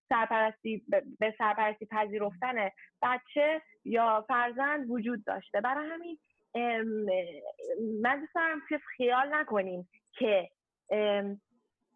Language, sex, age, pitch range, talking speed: Persian, female, 30-49, 195-245 Hz, 95 wpm